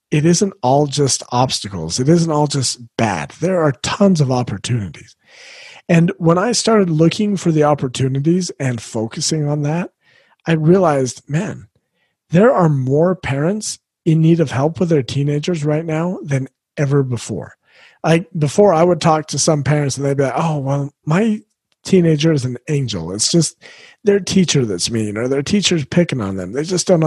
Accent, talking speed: American, 175 wpm